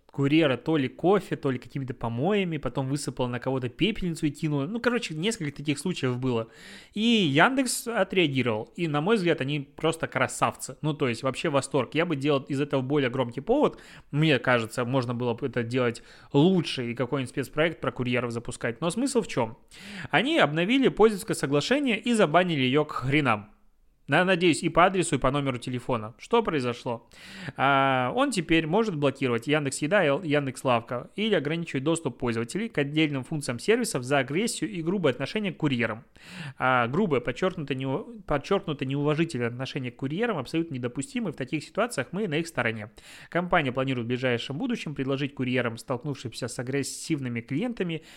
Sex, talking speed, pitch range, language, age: male, 160 wpm, 130-170 Hz, Russian, 20-39